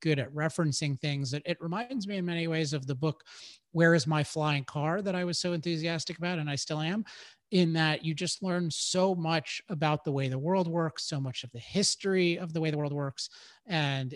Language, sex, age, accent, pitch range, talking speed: English, male, 30-49, American, 140-165 Hz, 225 wpm